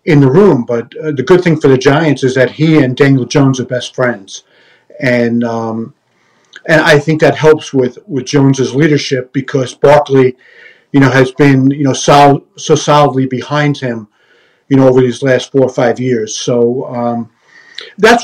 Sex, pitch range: male, 130-160 Hz